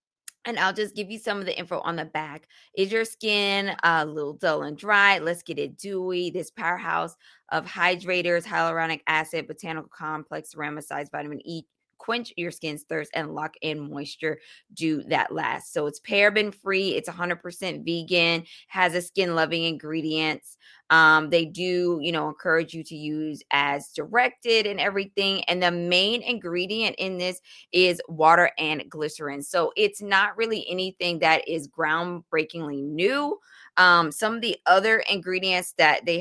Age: 20-39